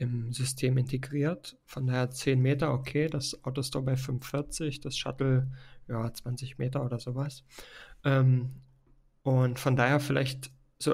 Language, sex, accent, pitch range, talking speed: German, male, German, 125-140 Hz, 135 wpm